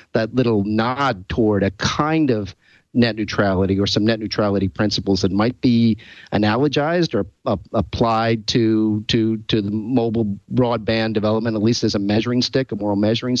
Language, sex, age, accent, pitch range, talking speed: English, male, 40-59, American, 105-120 Hz, 165 wpm